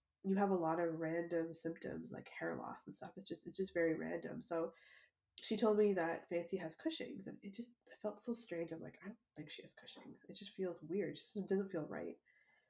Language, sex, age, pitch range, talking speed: English, female, 20-39, 170-210 Hz, 230 wpm